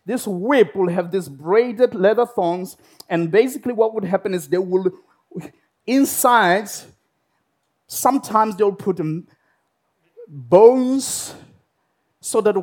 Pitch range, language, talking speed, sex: 170-230 Hz, English, 110 wpm, male